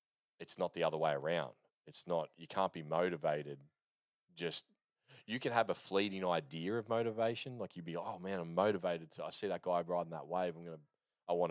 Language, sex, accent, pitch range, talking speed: English, male, Australian, 80-90 Hz, 210 wpm